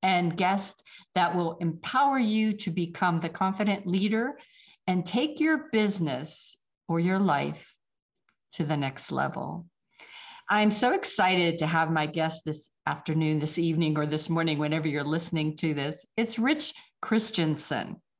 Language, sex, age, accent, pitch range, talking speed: English, female, 50-69, American, 160-220 Hz, 145 wpm